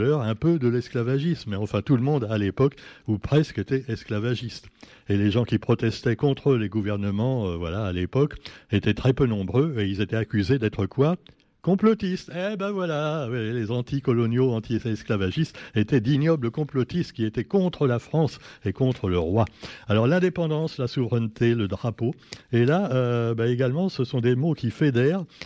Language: French